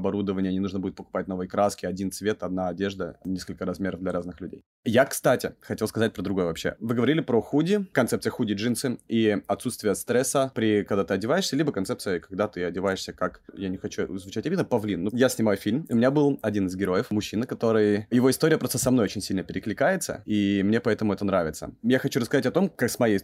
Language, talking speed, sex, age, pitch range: Russian, 210 wpm, male, 30-49, 100-125 Hz